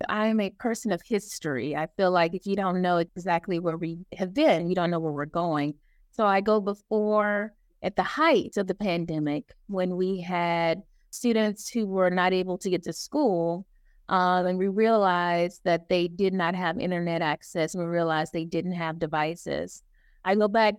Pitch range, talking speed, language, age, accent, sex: 170-205 Hz, 190 wpm, English, 30-49, American, female